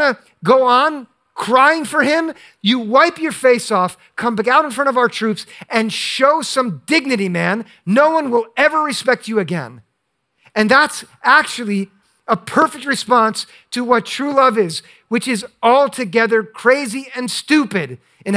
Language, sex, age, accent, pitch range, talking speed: English, male, 50-69, American, 170-245 Hz, 160 wpm